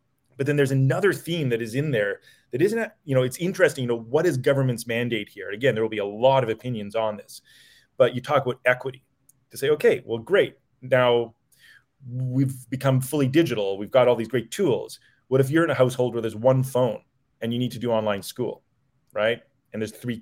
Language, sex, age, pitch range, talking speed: English, male, 30-49, 115-135 Hz, 225 wpm